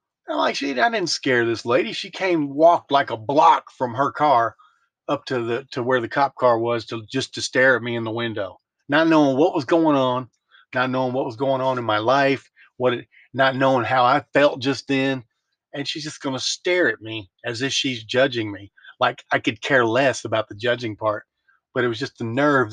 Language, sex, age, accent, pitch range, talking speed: English, male, 40-59, American, 110-140 Hz, 225 wpm